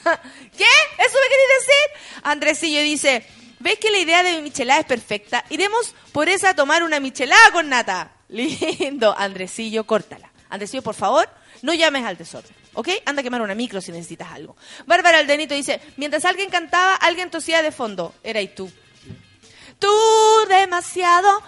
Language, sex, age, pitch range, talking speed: Spanish, female, 30-49, 255-360 Hz, 165 wpm